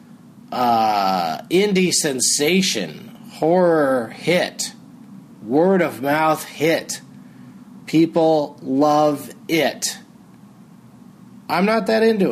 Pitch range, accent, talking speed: 150-205 Hz, American, 80 wpm